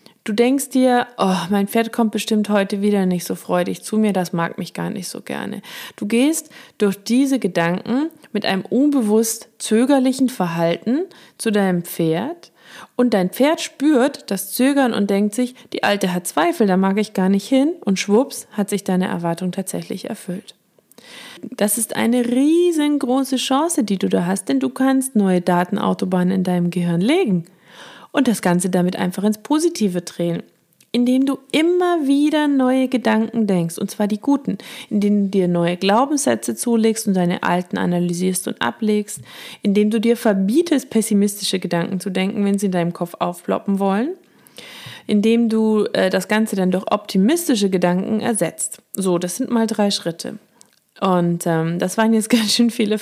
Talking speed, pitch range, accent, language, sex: 170 wpm, 185-250 Hz, German, German, female